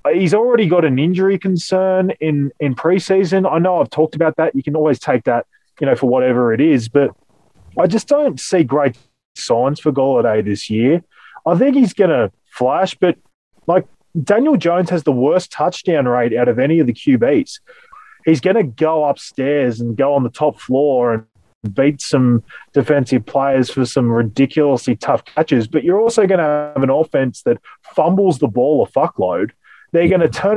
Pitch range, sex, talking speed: 125-190 Hz, male, 190 wpm